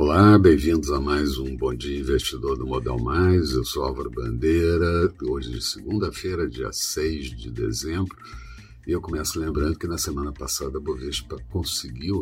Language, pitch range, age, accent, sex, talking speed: Portuguese, 65-85 Hz, 60-79, Brazilian, male, 160 wpm